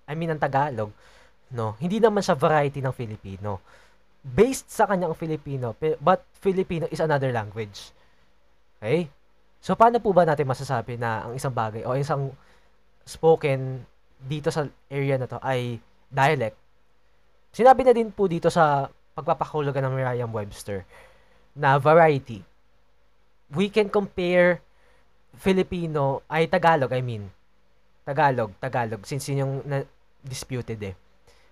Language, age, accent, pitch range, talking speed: Filipino, 20-39, native, 110-165 Hz, 130 wpm